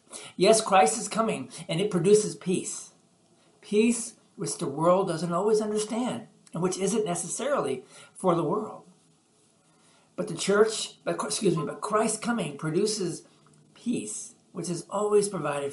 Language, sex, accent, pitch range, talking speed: English, male, American, 160-215 Hz, 140 wpm